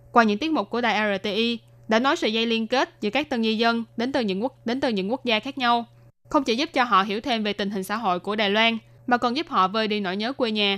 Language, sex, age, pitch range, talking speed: Vietnamese, female, 10-29, 195-235 Hz, 300 wpm